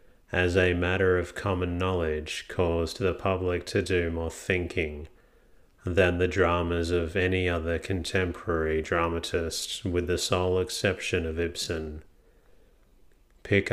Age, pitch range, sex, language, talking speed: 30-49, 85-95 Hz, male, English, 120 wpm